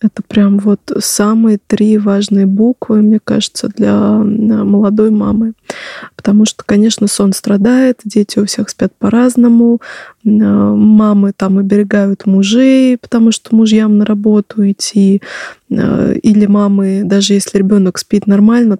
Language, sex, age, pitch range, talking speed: Russian, female, 20-39, 205-225 Hz, 125 wpm